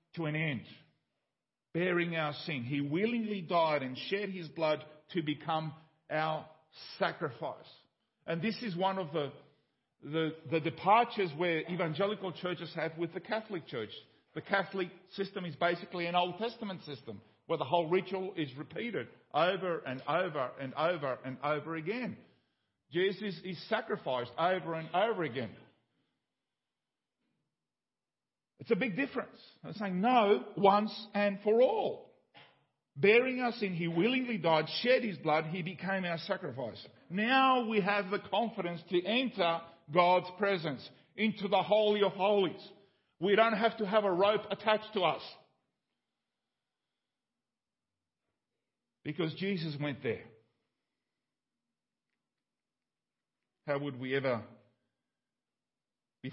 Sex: male